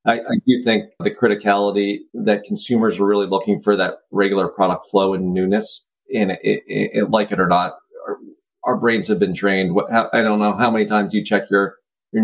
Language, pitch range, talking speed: English, 95-105 Hz, 215 wpm